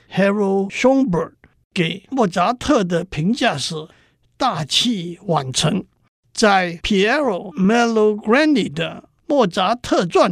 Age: 60-79